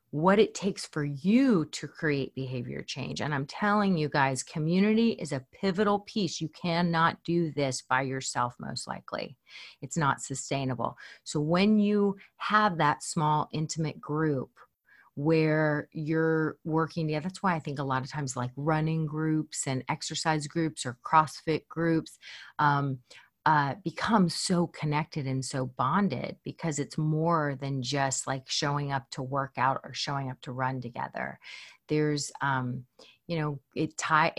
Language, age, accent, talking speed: English, 30-49, American, 155 wpm